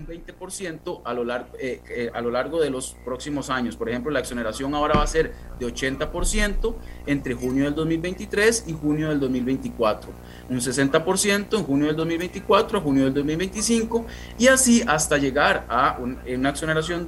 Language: Spanish